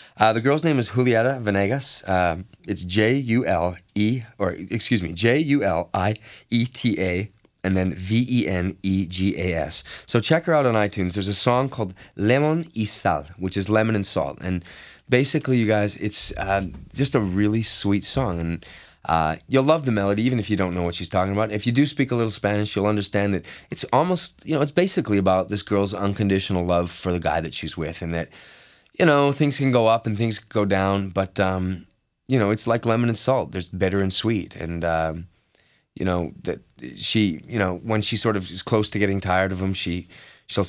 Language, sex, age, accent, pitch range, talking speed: English, male, 20-39, American, 90-110 Hz, 220 wpm